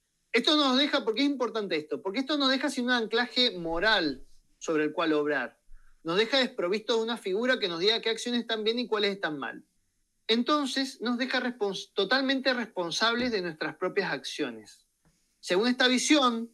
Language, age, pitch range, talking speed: Spanish, 30-49, 170-235 Hz, 180 wpm